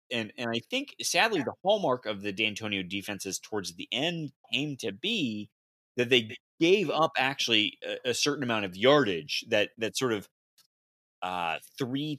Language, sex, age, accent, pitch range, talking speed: English, male, 30-49, American, 95-135 Hz, 165 wpm